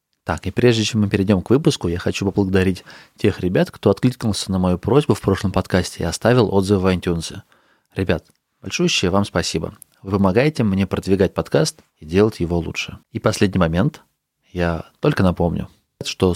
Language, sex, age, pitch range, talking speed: Russian, male, 30-49, 90-115 Hz, 170 wpm